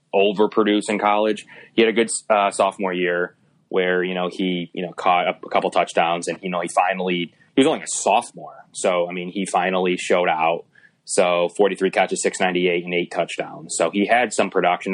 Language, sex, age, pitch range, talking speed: English, male, 20-39, 90-105 Hz, 205 wpm